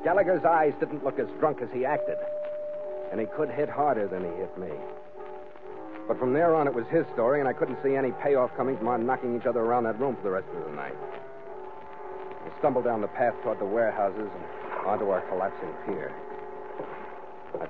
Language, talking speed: English, 205 wpm